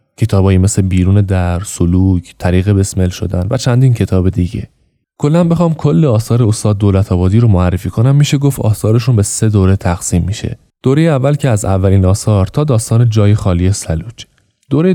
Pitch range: 95-120 Hz